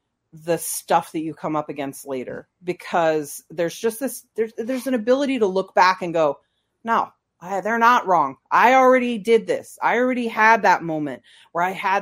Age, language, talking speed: 40-59, English, 190 wpm